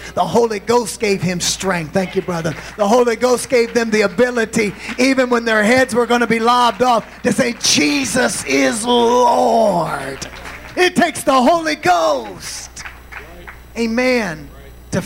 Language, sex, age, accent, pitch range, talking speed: English, male, 30-49, American, 205-280 Hz, 150 wpm